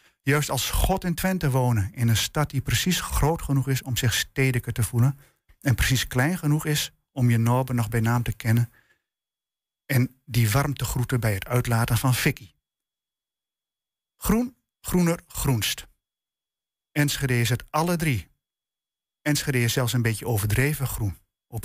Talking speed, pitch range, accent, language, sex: 160 wpm, 115-145 Hz, Dutch, Dutch, male